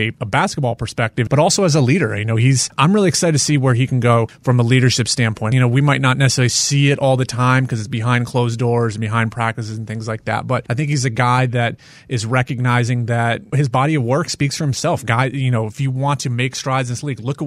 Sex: male